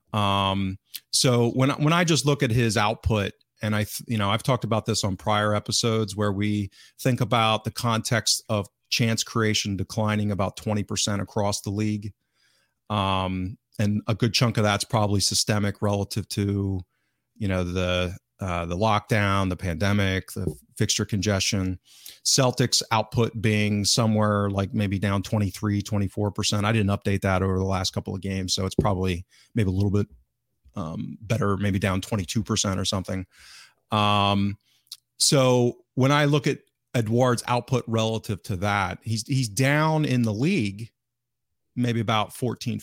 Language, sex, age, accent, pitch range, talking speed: English, male, 40-59, American, 95-115 Hz, 160 wpm